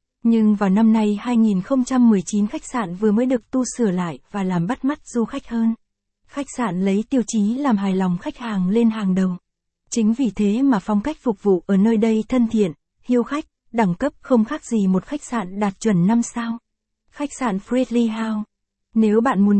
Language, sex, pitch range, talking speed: Vietnamese, female, 205-245 Hz, 205 wpm